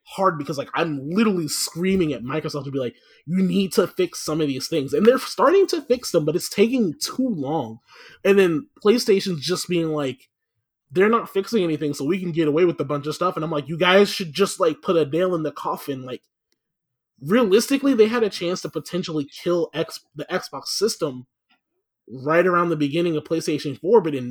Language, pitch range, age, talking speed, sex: English, 150-190 Hz, 20-39, 210 wpm, male